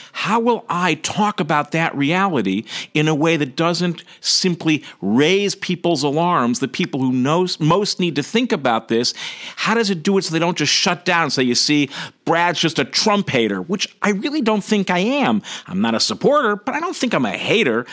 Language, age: English, 50-69